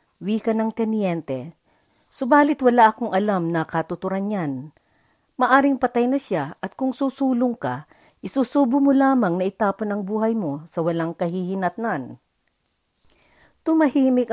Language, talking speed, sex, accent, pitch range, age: Filipino, 125 wpm, female, native, 180-240 Hz, 50-69